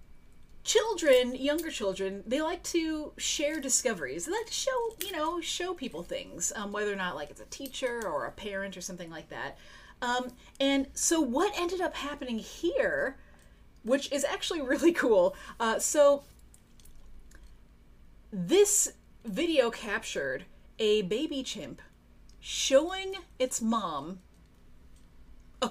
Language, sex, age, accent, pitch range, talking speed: English, female, 30-49, American, 185-280 Hz, 135 wpm